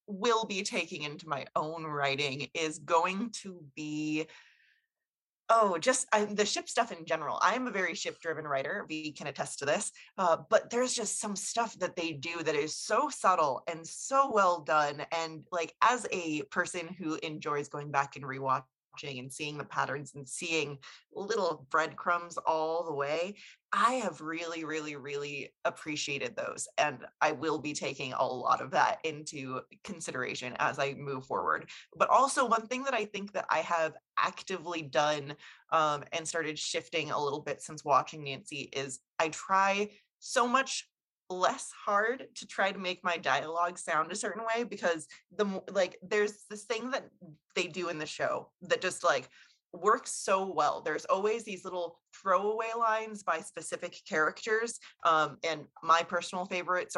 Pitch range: 155-205 Hz